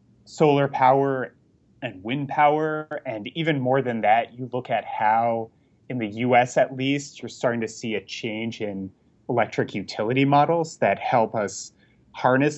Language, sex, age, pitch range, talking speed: English, male, 30-49, 110-145 Hz, 155 wpm